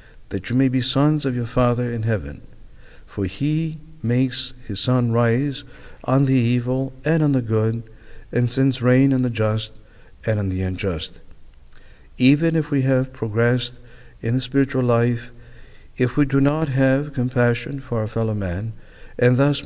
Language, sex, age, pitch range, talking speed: English, male, 60-79, 110-135 Hz, 165 wpm